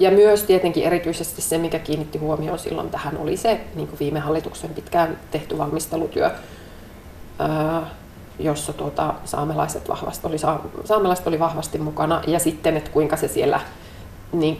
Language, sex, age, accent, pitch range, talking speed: Finnish, female, 30-49, native, 155-205 Hz, 140 wpm